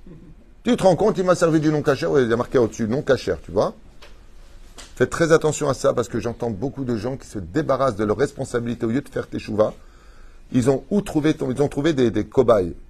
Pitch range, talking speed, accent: 105-145 Hz, 235 wpm, French